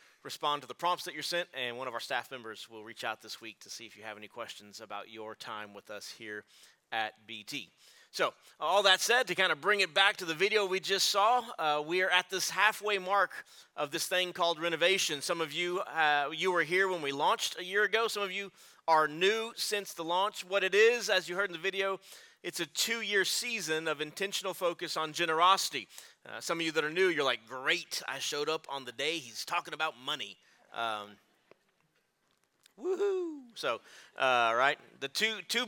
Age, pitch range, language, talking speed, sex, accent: 30-49, 135-195 Hz, English, 215 wpm, male, American